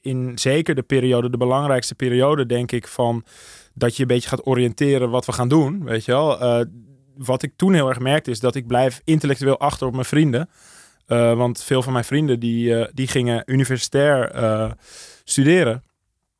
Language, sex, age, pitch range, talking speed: Dutch, male, 20-39, 115-140 Hz, 185 wpm